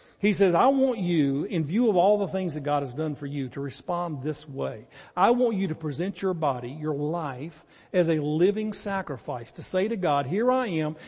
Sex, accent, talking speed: male, American, 220 wpm